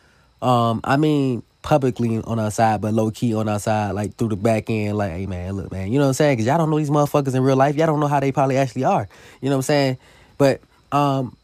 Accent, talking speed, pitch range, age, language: American, 275 wpm, 125-150 Hz, 20-39, English